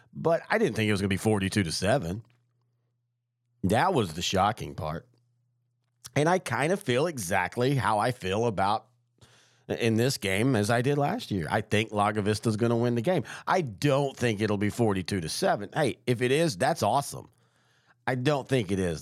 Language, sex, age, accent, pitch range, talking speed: English, male, 40-59, American, 105-130 Hz, 200 wpm